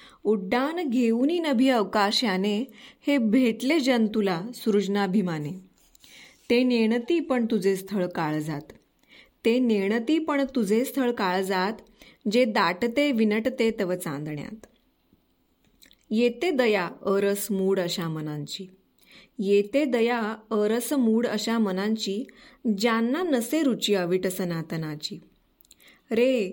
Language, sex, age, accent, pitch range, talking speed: Marathi, female, 20-39, native, 195-255 Hz, 95 wpm